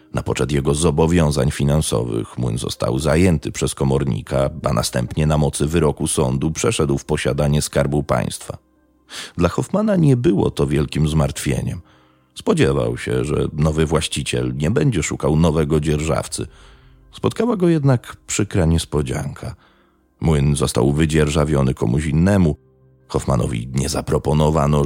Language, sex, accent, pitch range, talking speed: Polish, male, native, 70-85 Hz, 125 wpm